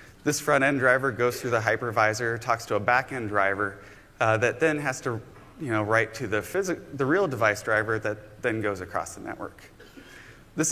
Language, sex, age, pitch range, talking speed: English, male, 30-49, 110-150 Hz, 190 wpm